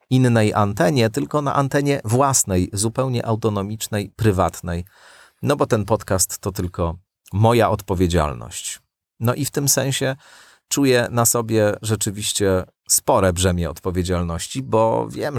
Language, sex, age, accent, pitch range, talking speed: Polish, male, 40-59, native, 95-135 Hz, 120 wpm